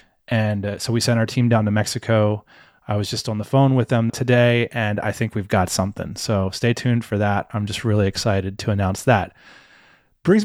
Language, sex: English, male